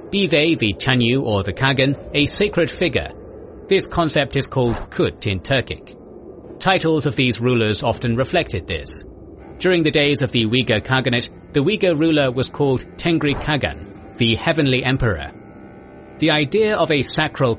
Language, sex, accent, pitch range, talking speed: English, male, British, 110-150 Hz, 155 wpm